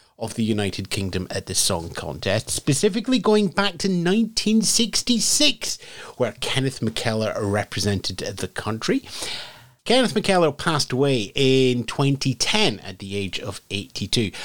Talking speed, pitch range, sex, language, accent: 125 wpm, 110-180 Hz, male, English, British